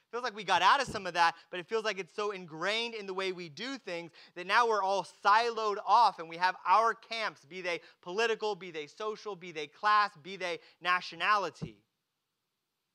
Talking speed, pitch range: 210 wpm, 180-235 Hz